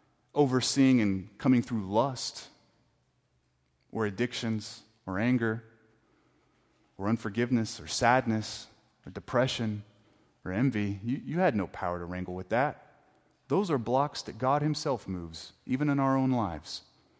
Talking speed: 135 wpm